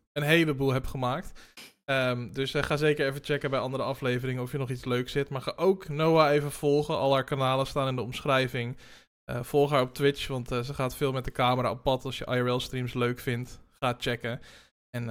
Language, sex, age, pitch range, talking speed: Dutch, male, 20-39, 130-160 Hz, 220 wpm